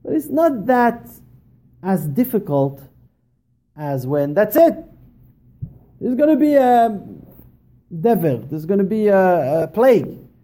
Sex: male